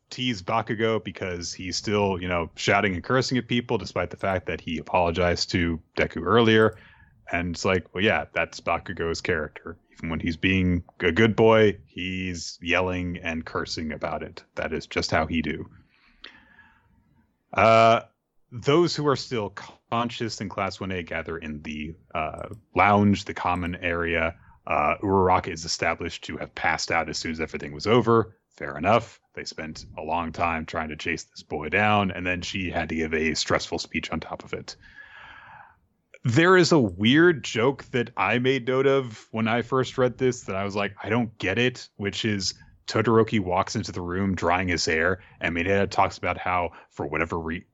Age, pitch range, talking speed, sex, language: 30-49, 90-115 Hz, 185 wpm, male, English